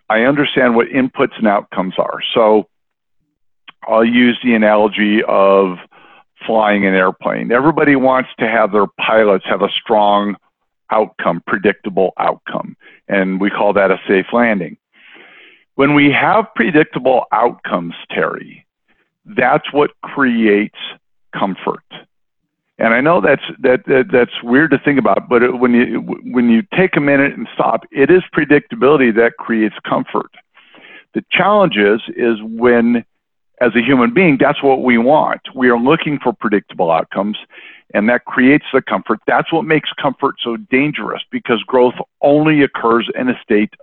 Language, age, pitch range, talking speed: English, 50-69, 110-140 Hz, 150 wpm